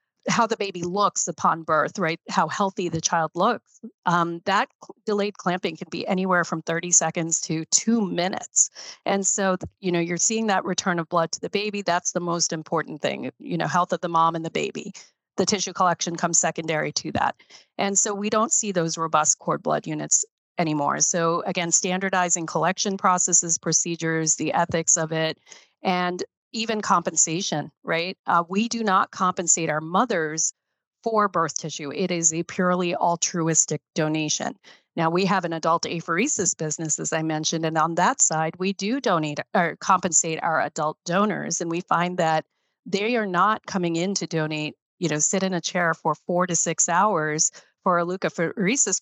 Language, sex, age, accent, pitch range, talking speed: English, female, 40-59, American, 165-195 Hz, 180 wpm